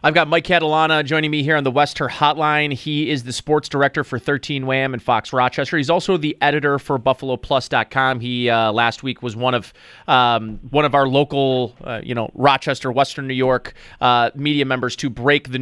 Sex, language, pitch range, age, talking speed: male, English, 135-165 Hz, 30-49, 205 wpm